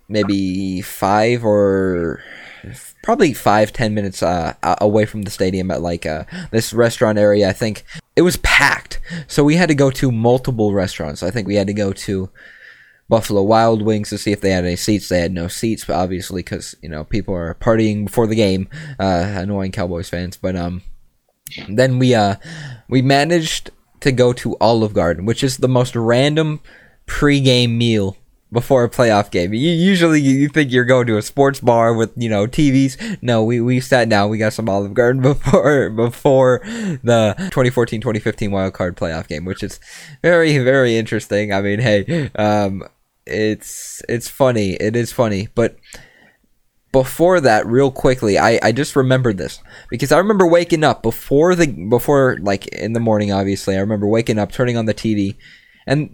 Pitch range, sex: 100-130 Hz, male